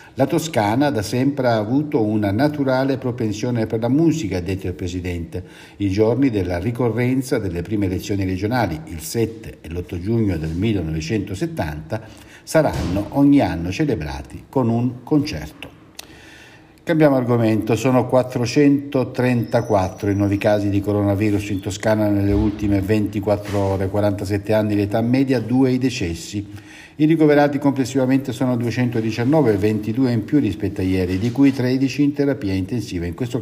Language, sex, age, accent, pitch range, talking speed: Italian, male, 60-79, native, 95-130 Hz, 145 wpm